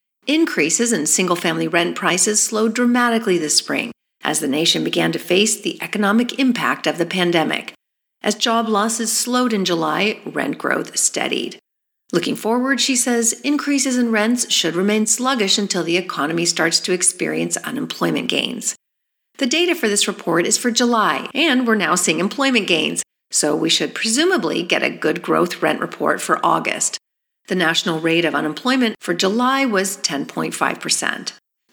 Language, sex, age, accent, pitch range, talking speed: English, female, 40-59, American, 175-240 Hz, 155 wpm